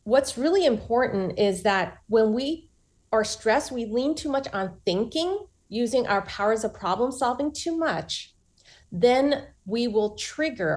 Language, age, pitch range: English, 30-49, 195-275 Hz